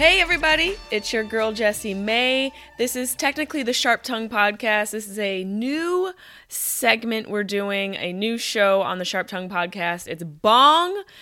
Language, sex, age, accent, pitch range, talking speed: English, female, 20-39, American, 200-245 Hz, 165 wpm